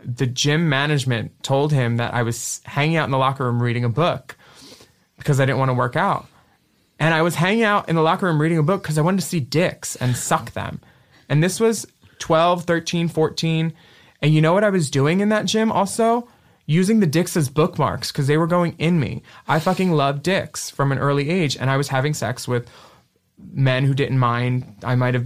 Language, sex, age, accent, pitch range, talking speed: English, male, 20-39, American, 125-170 Hz, 220 wpm